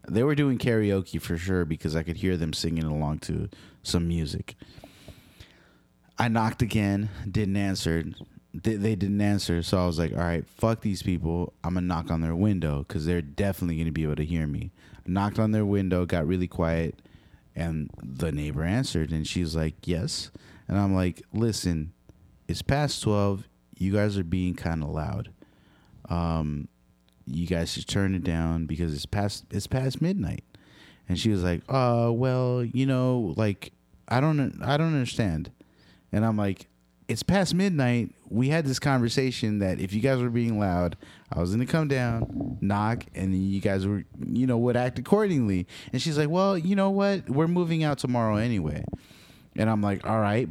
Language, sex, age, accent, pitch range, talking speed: English, male, 20-39, American, 85-120 Hz, 190 wpm